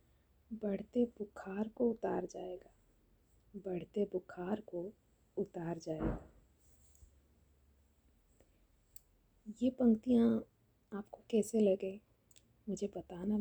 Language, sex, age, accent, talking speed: Hindi, female, 20-39, native, 75 wpm